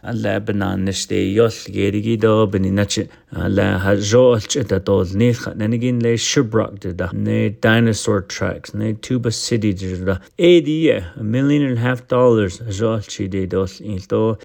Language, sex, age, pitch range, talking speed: English, male, 30-49, 100-125 Hz, 155 wpm